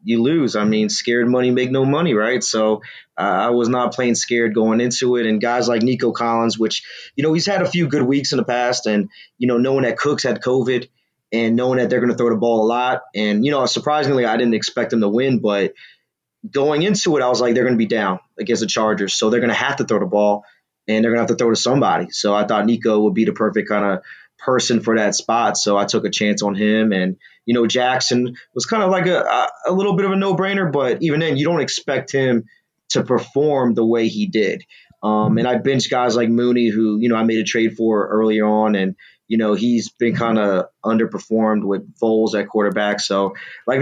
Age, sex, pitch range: 20-39, male, 110-130 Hz